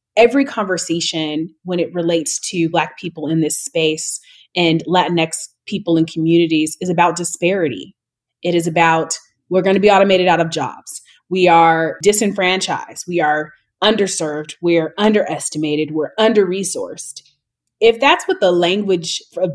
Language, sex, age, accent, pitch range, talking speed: English, female, 30-49, American, 165-225 Hz, 145 wpm